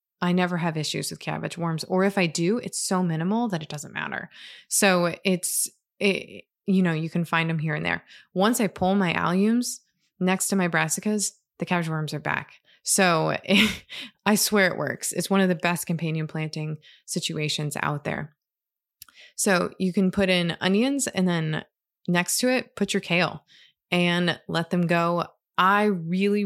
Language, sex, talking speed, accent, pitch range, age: English, female, 175 wpm, American, 160-190 Hz, 20-39